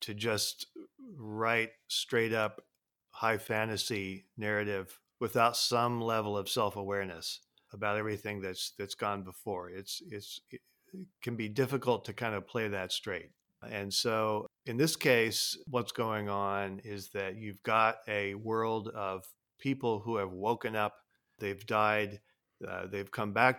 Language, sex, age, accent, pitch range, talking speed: English, male, 50-69, American, 100-115 Hz, 145 wpm